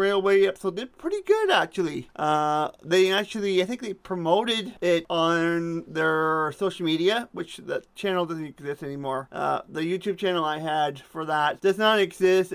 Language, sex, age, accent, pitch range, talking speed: English, male, 30-49, American, 165-200 Hz, 165 wpm